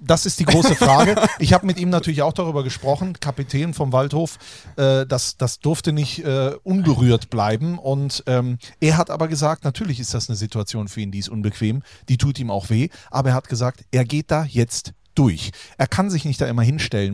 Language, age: German, 40-59